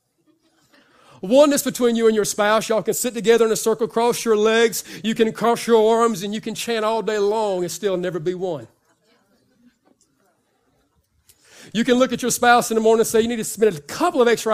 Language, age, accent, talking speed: English, 40-59, American, 215 wpm